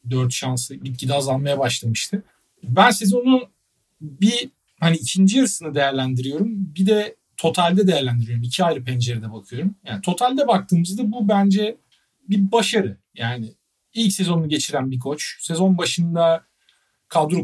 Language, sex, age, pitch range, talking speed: Turkish, male, 50-69, 135-195 Hz, 125 wpm